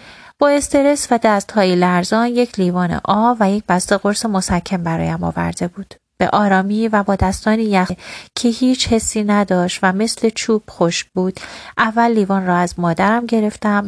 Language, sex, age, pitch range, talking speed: Persian, female, 30-49, 190-230 Hz, 160 wpm